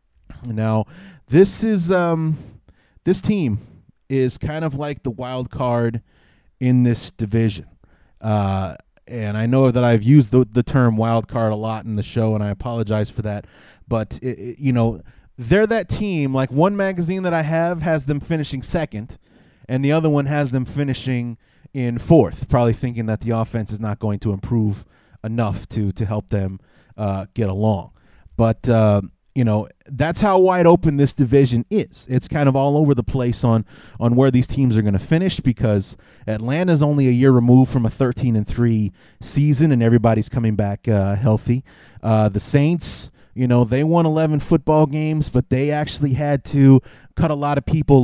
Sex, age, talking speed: male, 30-49, 185 wpm